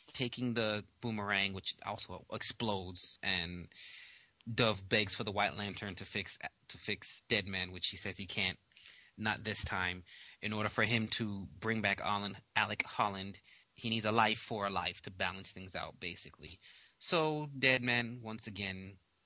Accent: American